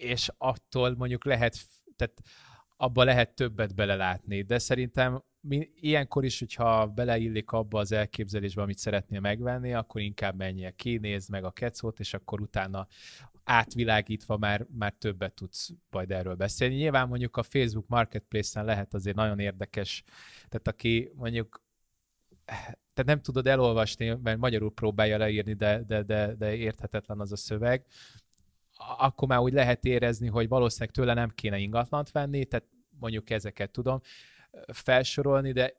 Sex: male